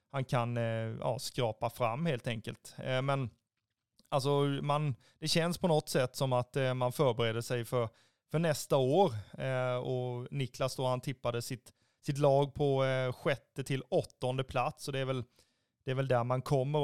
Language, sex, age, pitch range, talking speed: Swedish, male, 30-49, 125-150 Hz, 165 wpm